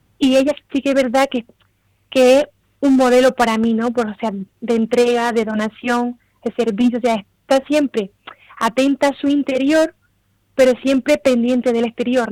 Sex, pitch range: female, 230-270 Hz